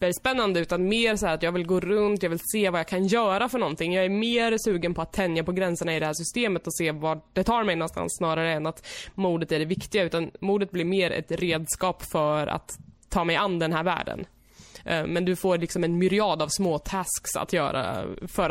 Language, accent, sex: Swedish, native, female